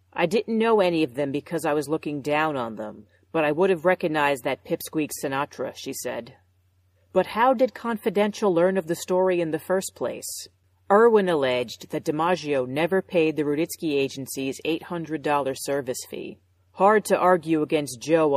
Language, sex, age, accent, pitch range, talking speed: English, female, 40-59, American, 125-175 Hz, 175 wpm